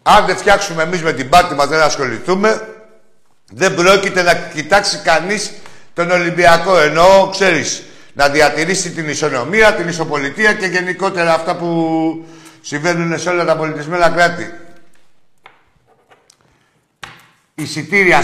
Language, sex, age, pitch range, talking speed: Greek, male, 60-79, 130-170 Hz, 120 wpm